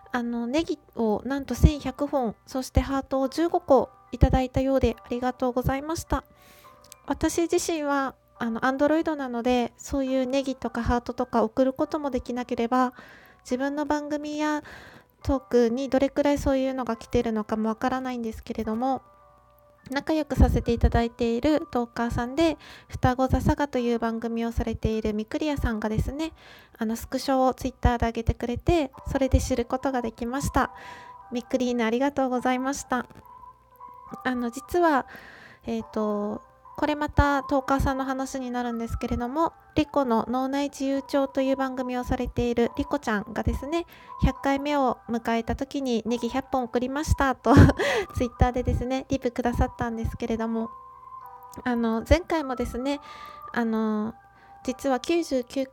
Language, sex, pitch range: Japanese, female, 240-280 Hz